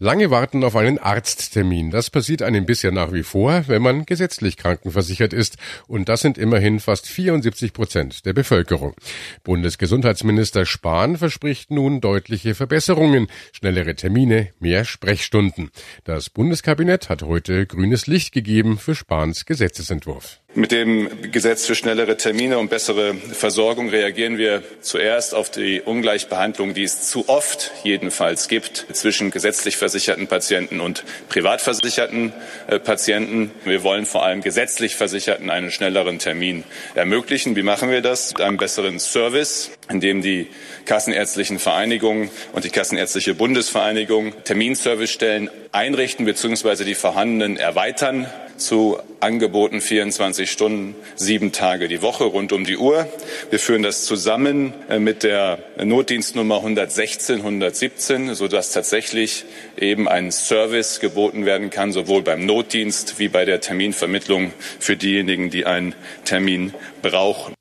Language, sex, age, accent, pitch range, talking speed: German, male, 50-69, German, 95-115 Hz, 130 wpm